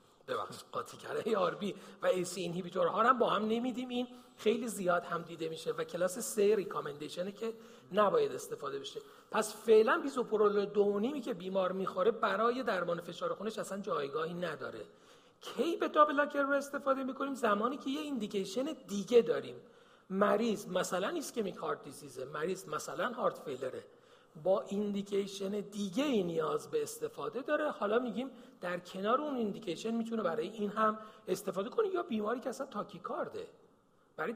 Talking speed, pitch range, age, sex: 155 wpm, 190-290 Hz, 40-59, male